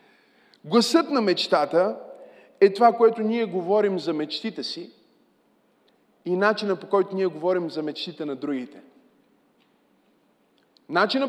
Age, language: 20-39, Bulgarian